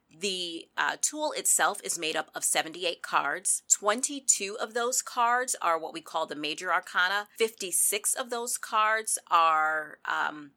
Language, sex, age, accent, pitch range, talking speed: English, female, 30-49, American, 155-215 Hz, 155 wpm